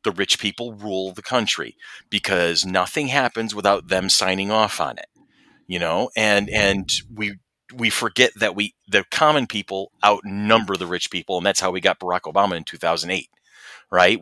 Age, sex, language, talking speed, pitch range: 40-59, male, English, 175 wpm, 95-115 Hz